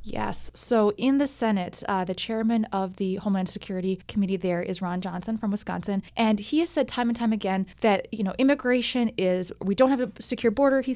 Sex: female